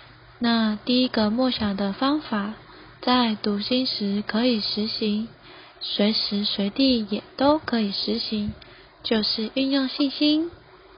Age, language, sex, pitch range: 20-39, Chinese, female, 210-270 Hz